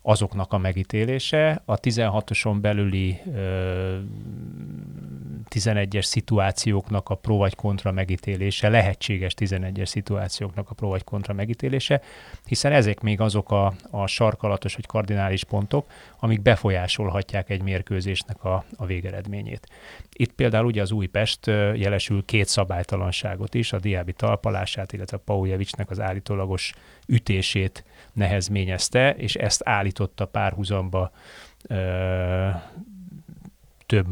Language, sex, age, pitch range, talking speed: Hungarian, male, 30-49, 95-110 Hz, 110 wpm